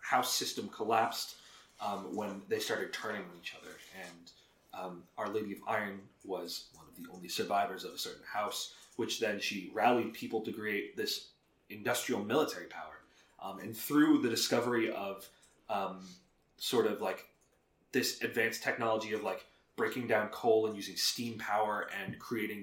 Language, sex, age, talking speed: English, male, 30-49, 165 wpm